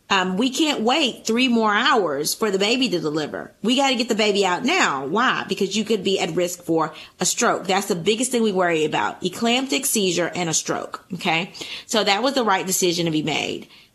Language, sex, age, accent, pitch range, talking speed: English, female, 30-49, American, 175-215 Hz, 225 wpm